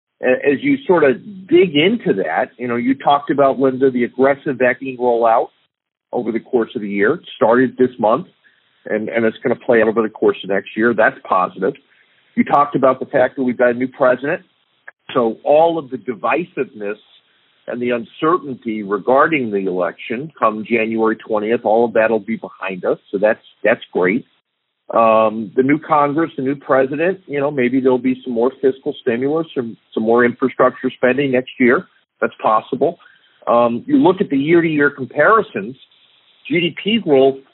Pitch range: 120-150 Hz